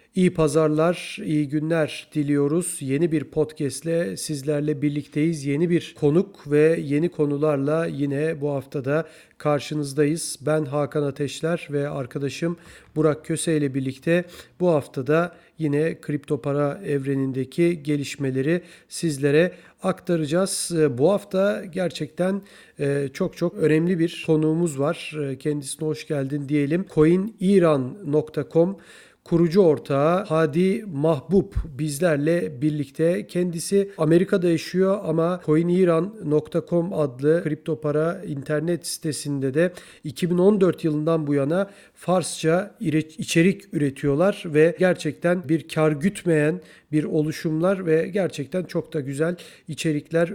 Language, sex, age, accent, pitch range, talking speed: Turkish, male, 40-59, native, 150-175 Hz, 110 wpm